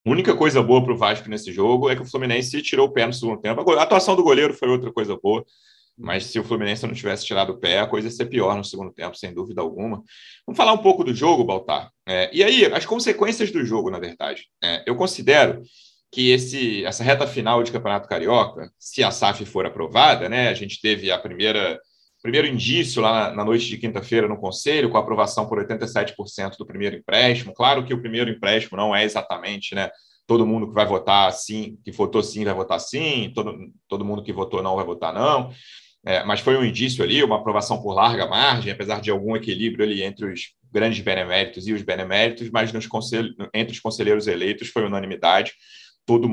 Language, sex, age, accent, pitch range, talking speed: Portuguese, male, 30-49, Brazilian, 105-125 Hz, 205 wpm